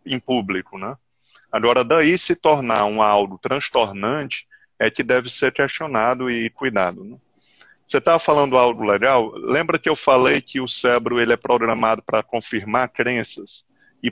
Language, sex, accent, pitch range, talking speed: Portuguese, male, Brazilian, 120-160 Hz, 155 wpm